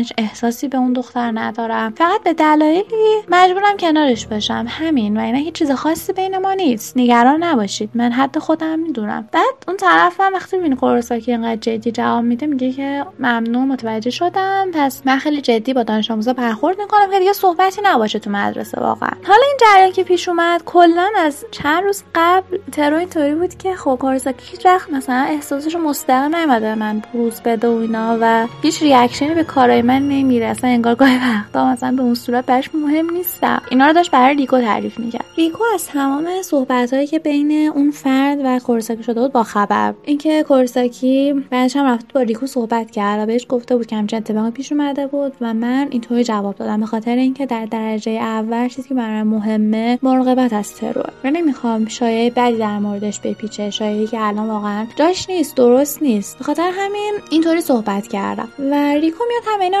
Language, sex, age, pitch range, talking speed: Persian, female, 20-39, 235-315 Hz, 180 wpm